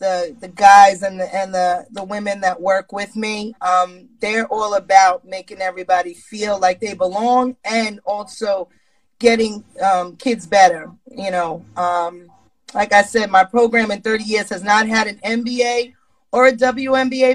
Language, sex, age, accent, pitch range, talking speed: English, female, 30-49, American, 195-235 Hz, 165 wpm